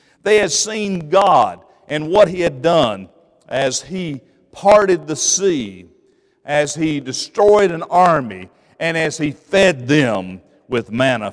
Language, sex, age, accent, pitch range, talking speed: English, male, 50-69, American, 125-190 Hz, 140 wpm